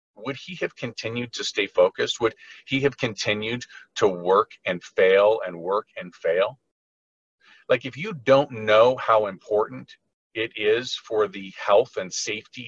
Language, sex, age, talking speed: English, male, 50-69, 155 wpm